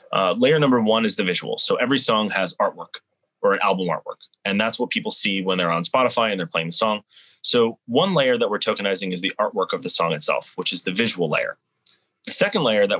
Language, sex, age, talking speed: English, male, 20-39, 240 wpm